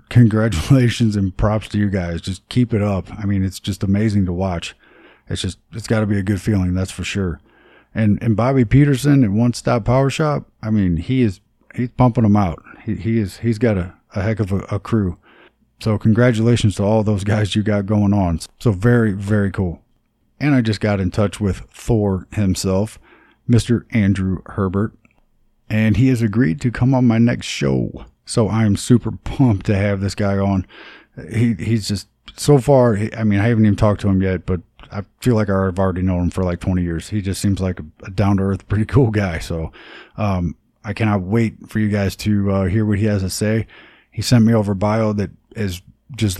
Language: English